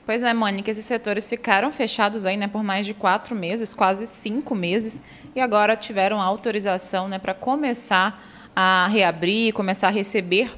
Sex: female